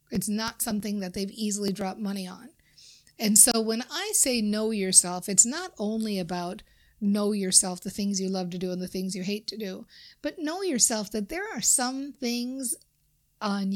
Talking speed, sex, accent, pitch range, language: 190 wpm, female, American, 205-270 Hz, English